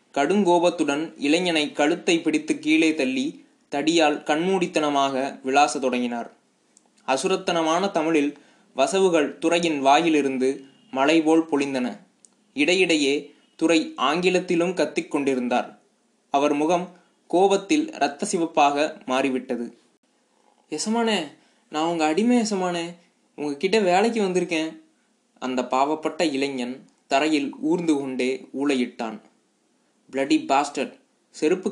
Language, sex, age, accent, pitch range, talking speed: Tamil, male, 20-39, native, 135-185 Hz, 90 wpm